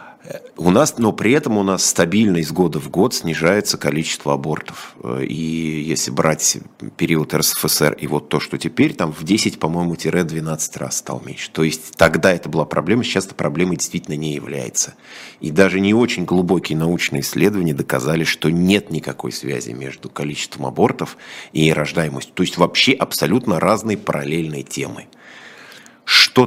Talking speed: 160 wpm